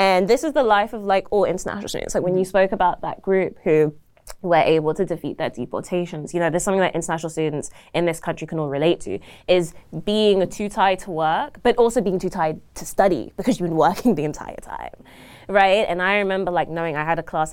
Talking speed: 235 wpm